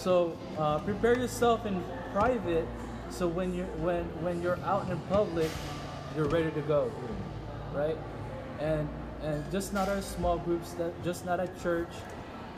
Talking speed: 155 wpm